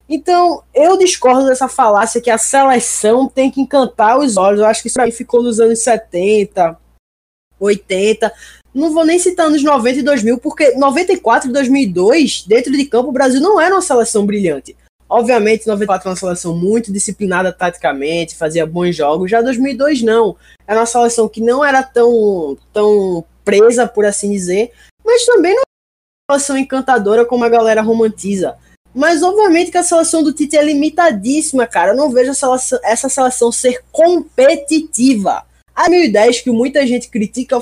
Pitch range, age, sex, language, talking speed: 220-295 Hz, 20-39, female, Portuguese, 170 wpm